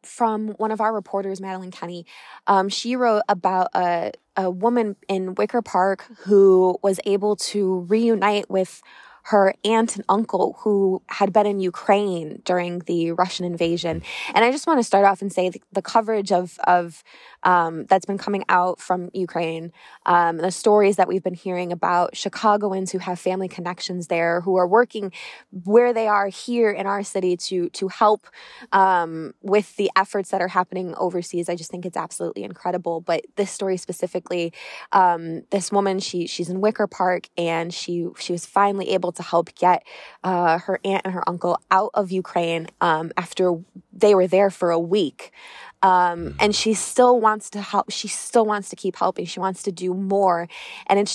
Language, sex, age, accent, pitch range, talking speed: English, female, 20-39, American, 180-210 Hz, 185 wpm